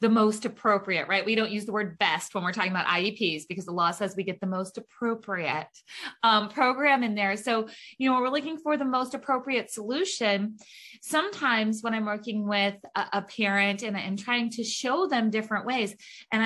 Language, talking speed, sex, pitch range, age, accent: English, 195 wpm, female, 210-260 Hz, 20-39, American